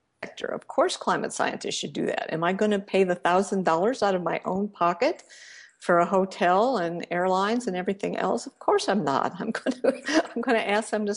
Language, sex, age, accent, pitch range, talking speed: English, female, 60-79, American, 175-225 Hz, 210 wpm